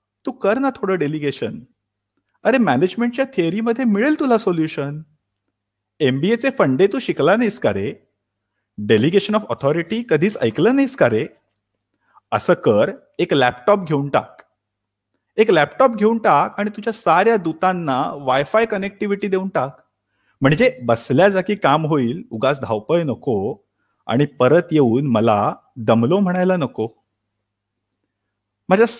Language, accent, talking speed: Marathi, native, 95 wpm